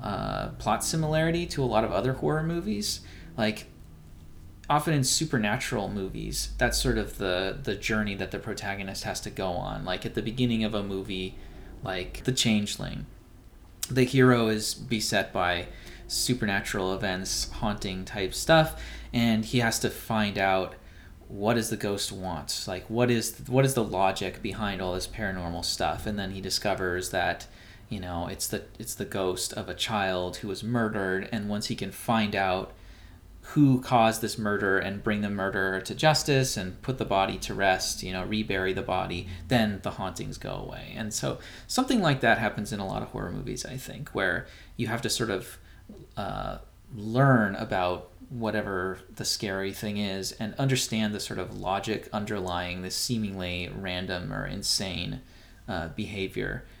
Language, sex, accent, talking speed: English, male, American, 175 wpm